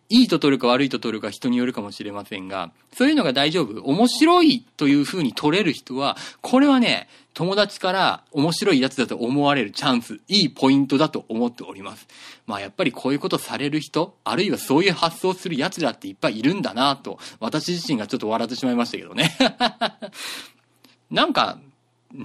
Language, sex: Japanese, male